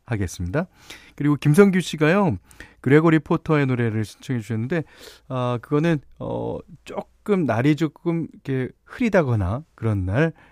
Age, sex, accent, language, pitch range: 40-59, male, native, Korean, 90-145 Hz